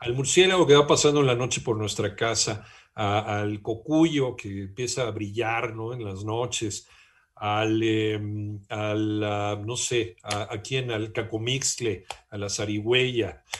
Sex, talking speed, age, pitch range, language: male, 155 wpm, 50-69, 115-160 Hz, Spanish